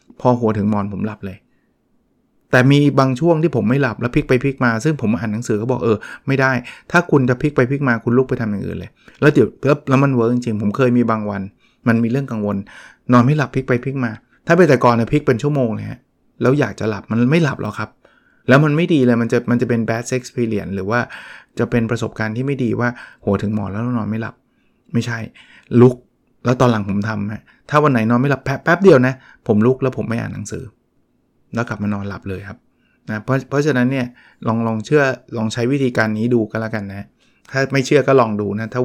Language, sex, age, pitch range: Thai, male, 20-39, 110-130 Hz